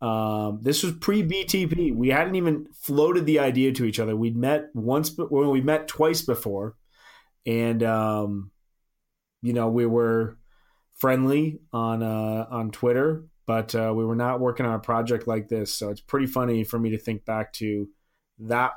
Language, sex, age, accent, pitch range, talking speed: English, male, 30-49, American, 105-130 Hz, 175 wpm